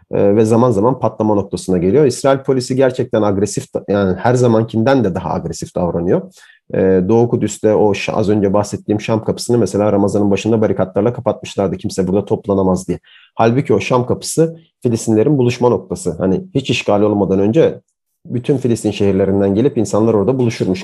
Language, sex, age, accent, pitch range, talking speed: Turkish, male, 40-59, native, 100-140 Hz, 155 wpm